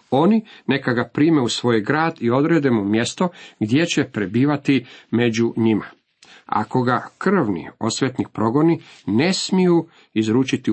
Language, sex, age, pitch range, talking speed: Croatian, male, 50-69, 110-145 Hz, 135 wpm